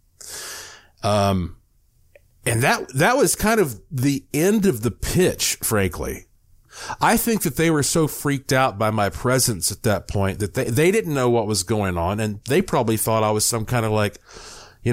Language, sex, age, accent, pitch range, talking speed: English, male, 40-59, American, 105-140 Hz, 190 wpm